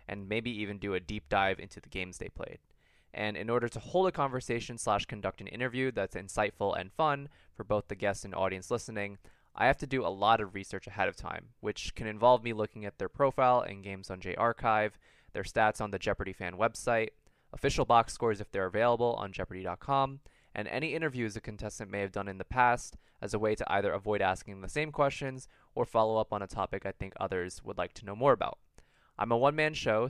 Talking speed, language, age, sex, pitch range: 225 wpm, English, 20-39, male, 100-125 Hz